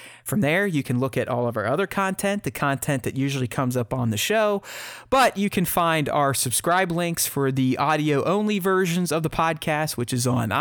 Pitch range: 140-190 Hz